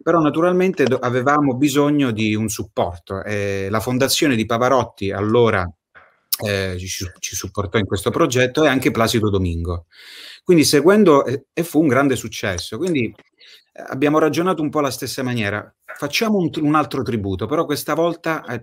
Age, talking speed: 30-49, 160 wpm